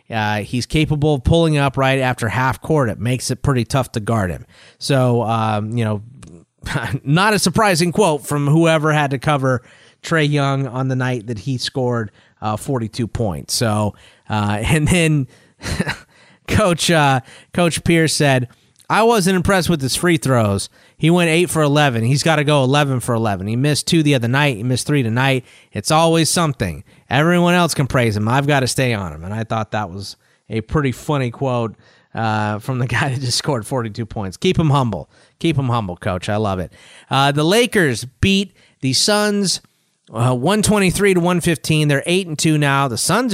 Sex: male